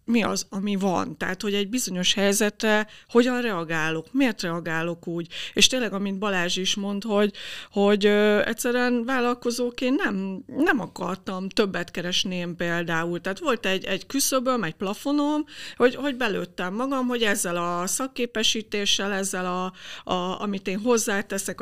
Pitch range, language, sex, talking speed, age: 190-240 Hz, Hungarian, female, 145 wpm, 50-69